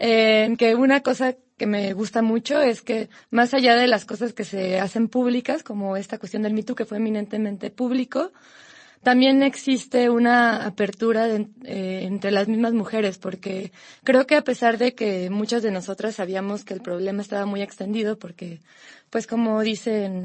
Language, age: Spanish, 20-39